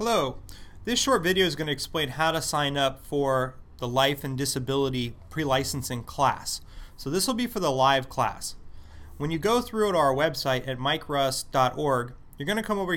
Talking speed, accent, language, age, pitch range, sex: 190 wpm, American, English, 30-49, 125-175 Hz, male